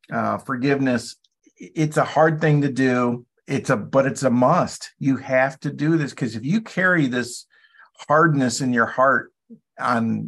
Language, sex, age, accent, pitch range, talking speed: English, male, 50-69, American, 115-135 Hz, 170 wpm